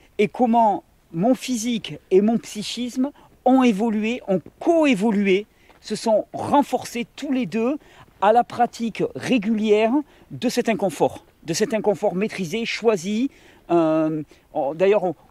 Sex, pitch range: male, 190-245 Hz